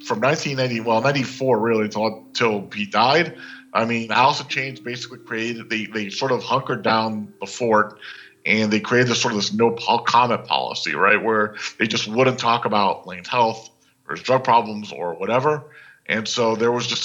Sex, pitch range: male, 105-120 Hz